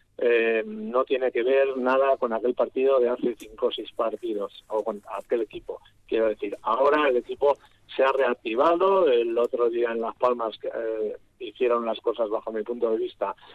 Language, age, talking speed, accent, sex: Spanish, 50-69, 185 wpm, Spanish, male